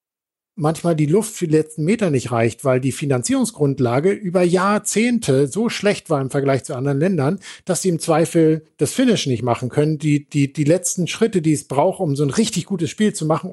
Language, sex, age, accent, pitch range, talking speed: German, male, 50-69, German, 140-175 Hz, 210 wpm